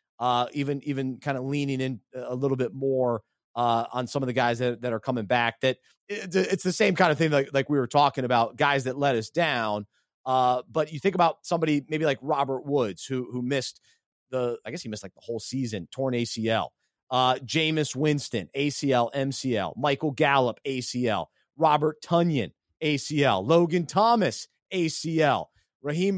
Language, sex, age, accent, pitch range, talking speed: English, male, 30-49, American, 130-165 Hz, 185 wpm